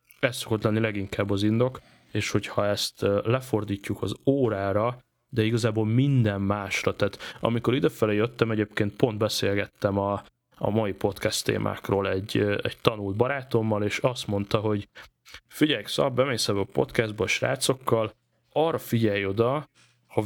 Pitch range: 105-125 Hz